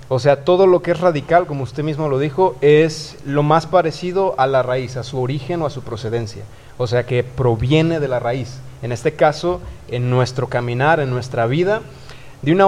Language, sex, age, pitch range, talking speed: Spanish, male, 30-49, 130-160 Hz, 210 wpm